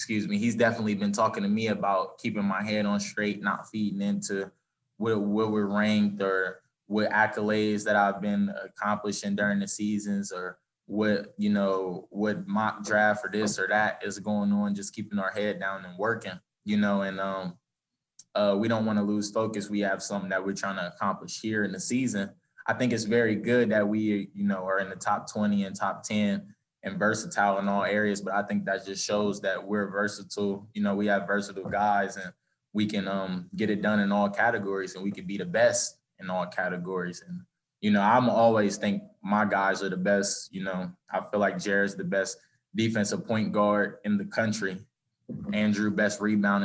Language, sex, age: English, male, 20-39